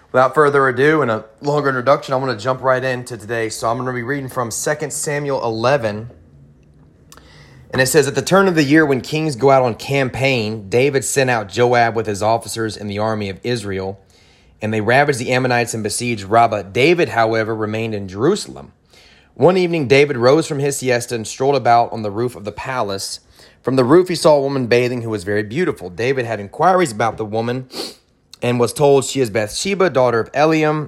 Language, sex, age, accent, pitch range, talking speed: English, male, 30-49, American, 110-135 Hz, 210 wpm